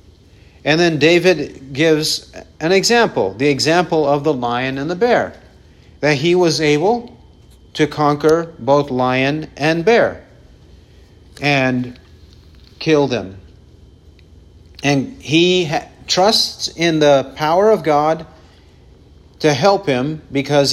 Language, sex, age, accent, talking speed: English, male, 50-69, American, 115 wpm